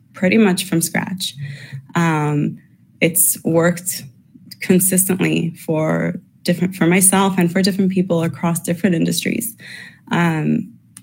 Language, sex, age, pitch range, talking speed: English, female, 20-39, 155-180 Hz, 110 wpm